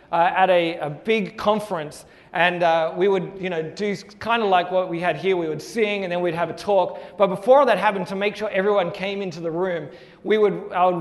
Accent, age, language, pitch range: Australian, 30-49, English, 175-225 Hz